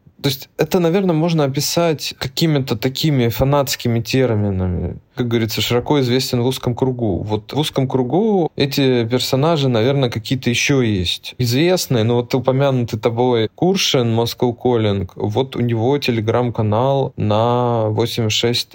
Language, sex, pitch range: Russian, male, 105-130 Hz